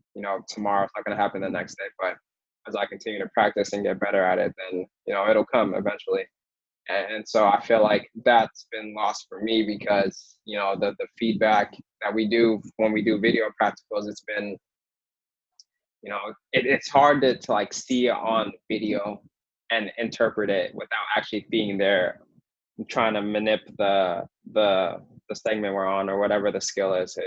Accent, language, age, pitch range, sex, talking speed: American, English, 20-39, 100-115 Hz, male, 190 wpm